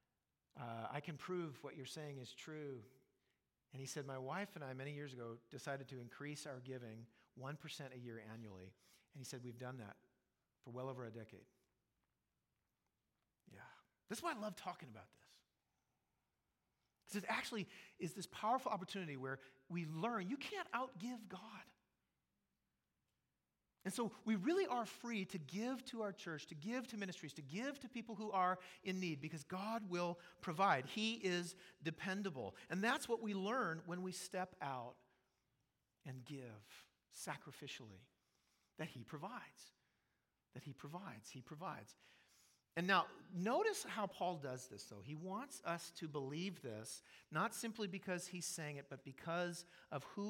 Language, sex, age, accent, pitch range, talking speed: English, male, 40-59, American, 130-190 Hz, 160 wpm